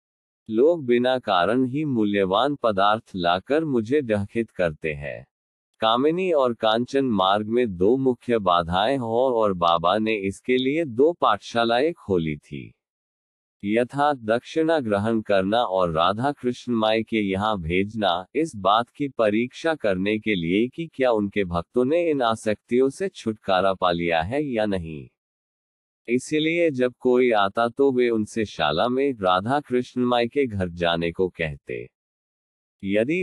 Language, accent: Hindi, native